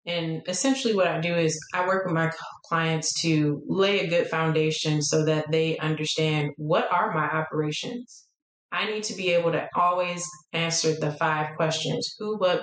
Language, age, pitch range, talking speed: English, 30-49, 150-170 Hz, 175 wpm